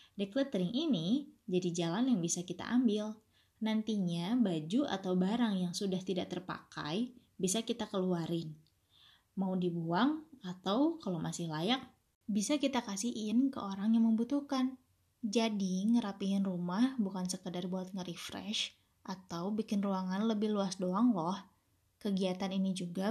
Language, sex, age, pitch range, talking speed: Indonesian, female, 20-39, 190-235 Hz, 125 wpm